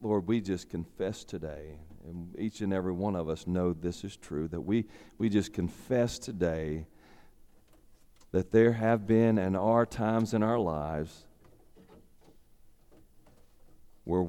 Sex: male